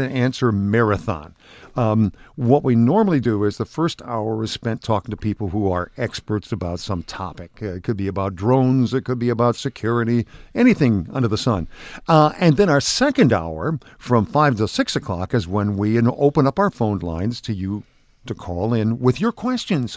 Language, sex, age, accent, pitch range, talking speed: English, male, 50-69, American, 110-150 Hz, 190 wpm